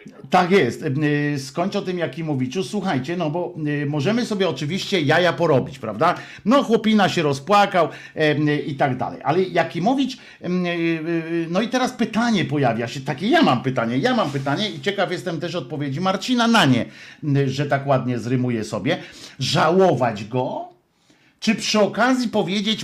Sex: male